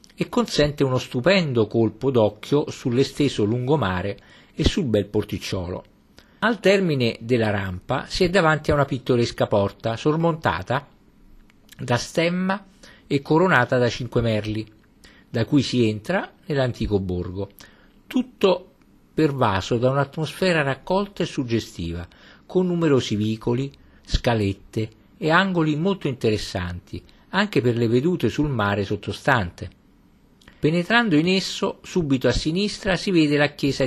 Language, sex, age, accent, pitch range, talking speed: Italian, male, 50-69, native, 105-155 Hz, 120 wpm